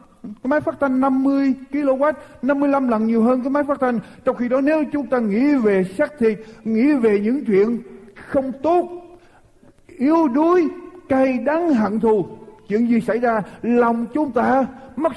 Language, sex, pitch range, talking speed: Vietnamese, male, 200-275 Hz, 175 wpm